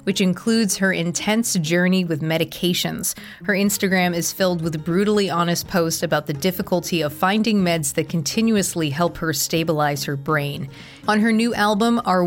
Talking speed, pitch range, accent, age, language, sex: 160 wpm, 160-195 Hz, American, 30-49, English, female